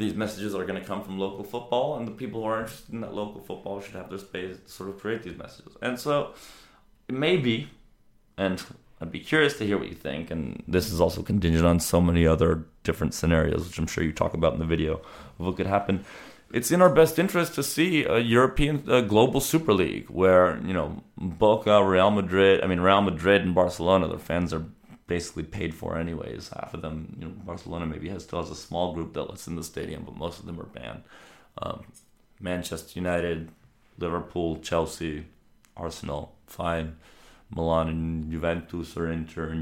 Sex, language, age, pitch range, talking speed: male, English, 30-49, 80-105 Hz, 205 wpm